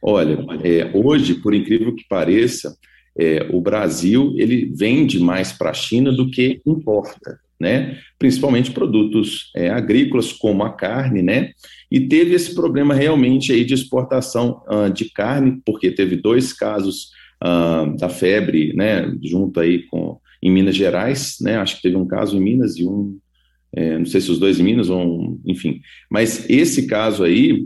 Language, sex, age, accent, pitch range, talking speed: Portuguese, male, 40-59, Brazilian, 85-130 Hz, 170 wpm